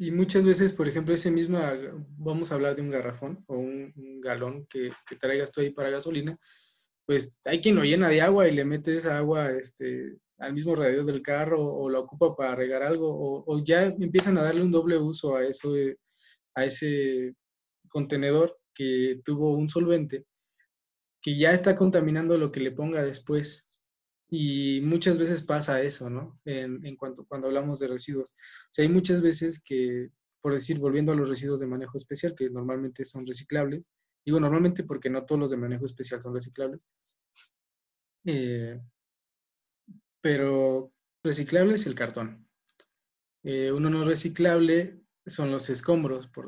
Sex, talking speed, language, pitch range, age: male, 170 wpm, Spanish, 130-160 Hz, 20-39